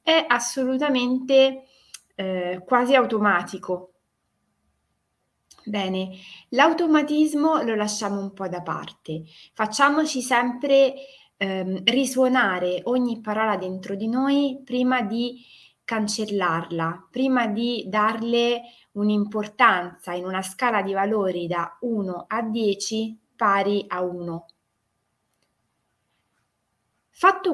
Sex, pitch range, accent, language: female, 180-250 Hz, native, Italian